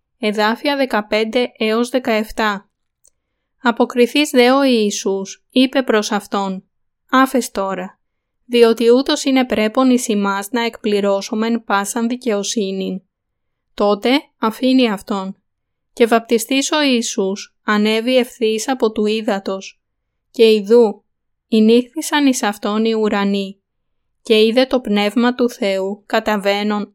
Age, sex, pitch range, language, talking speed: 20-39, female, 205-245 Hz, Greek, 105 wpm